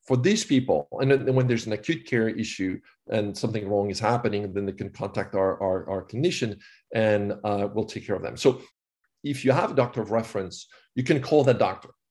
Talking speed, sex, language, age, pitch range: 210 wpm, male, English, 40-59, 105-140 Hz